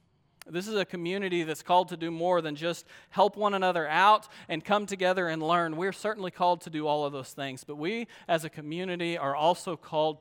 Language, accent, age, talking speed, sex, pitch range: English, American, 40-59, 215 wpm, male, 160-215 Hz